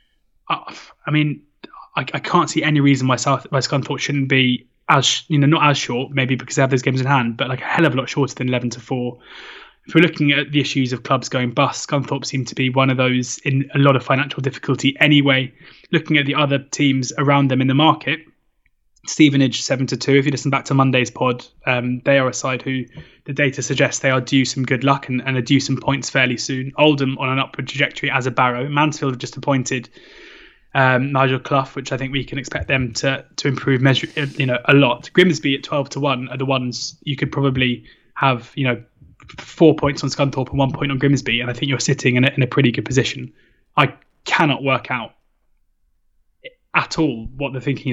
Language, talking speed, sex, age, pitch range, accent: English, 230 wpm, male, 20-39, 130-145 Hz, British